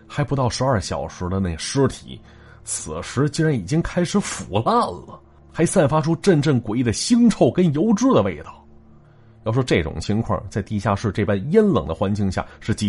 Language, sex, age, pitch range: Chinese, male, 30-49, 100-155 Hz